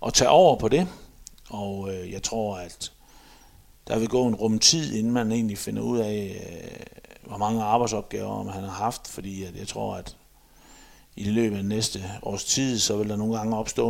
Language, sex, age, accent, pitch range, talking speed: Danish, male, 50-69, native, 100-115 Hz, 200 wpm